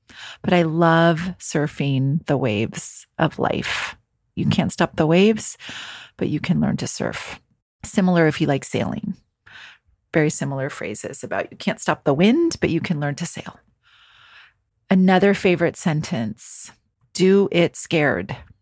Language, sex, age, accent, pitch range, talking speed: English, female, 40-59, American, 150-195 Hz, 145 wpm